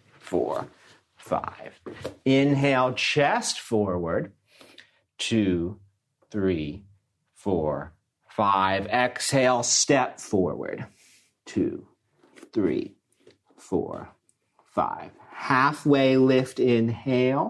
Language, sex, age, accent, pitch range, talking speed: English, male, 40-59, American, 110-140 Hz, 70 wpm